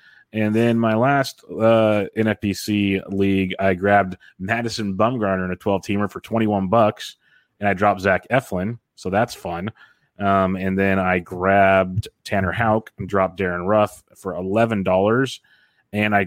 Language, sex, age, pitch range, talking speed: English, male, 30-49, 95-110 Hz, 160 wpm